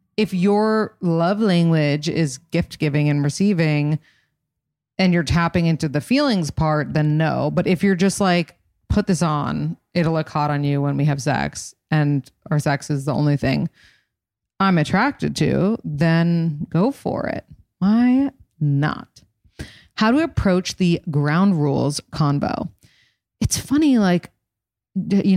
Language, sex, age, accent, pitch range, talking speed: English, female, 30-49, American, 150-190 Hz, 150 wpm